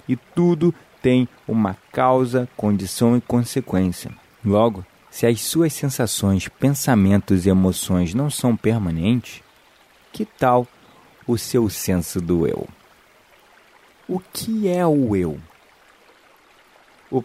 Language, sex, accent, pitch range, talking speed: Portuguese, male, Brazilian, 95-130 Hz, 110 wpm